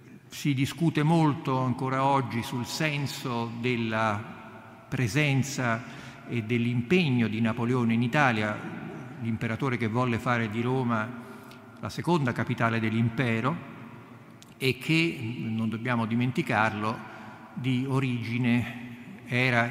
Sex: male